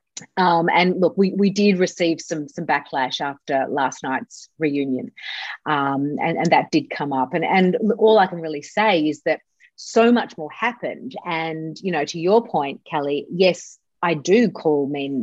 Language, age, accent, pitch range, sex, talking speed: English, 30-49, Australian, 150-195 Hz, female, 185 wpm